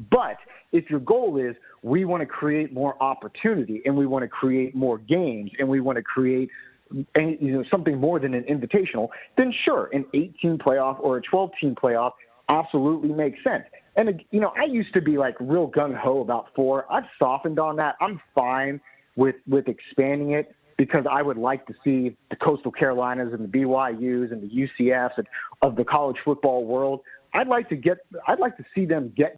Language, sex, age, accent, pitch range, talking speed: English, male, 30-49, American, 130-160 Hz, 195 wpm